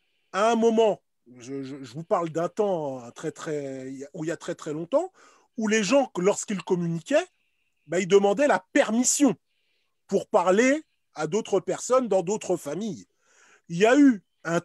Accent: French